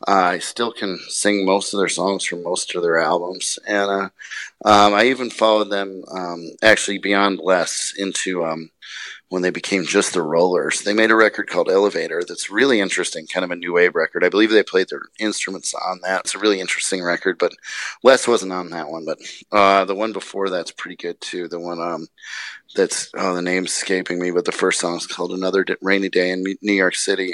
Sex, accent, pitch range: male, American, 90-105 Hz